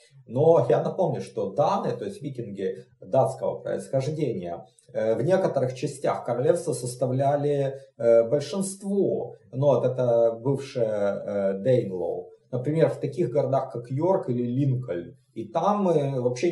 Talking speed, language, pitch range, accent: 120 wpm, Russian, 115-150 Hz, native